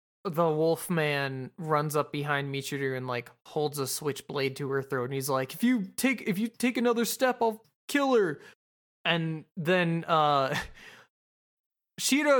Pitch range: 140-195 Hz